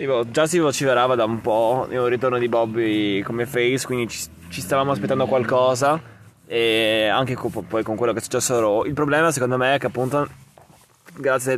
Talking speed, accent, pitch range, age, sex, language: 180 wpm, native, 115-140 Hz, 20-39, male, Italian